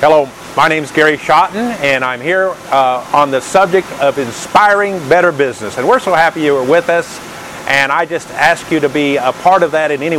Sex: male